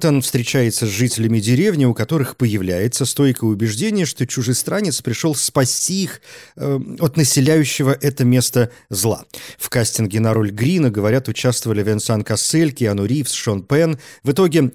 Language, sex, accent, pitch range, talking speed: Russian, male, native, 115-150 Hz, 145 wpm